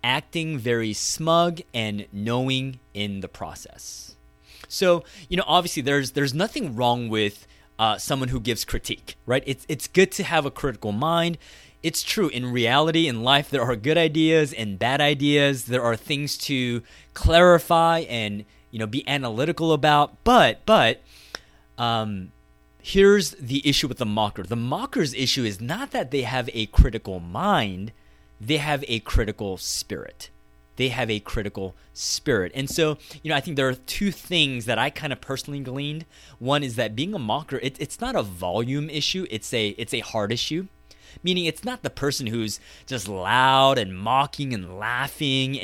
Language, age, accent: English, 30-49, American